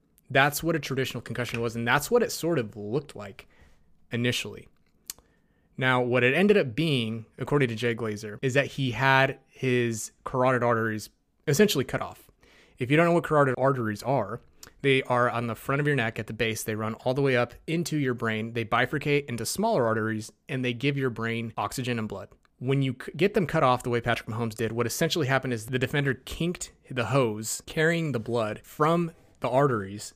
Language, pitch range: English, 115-135 Hz